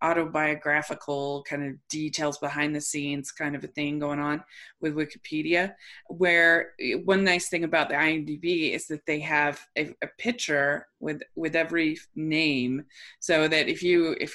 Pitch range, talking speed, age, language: 150-175 Hz, 160 wpm, 20-39, English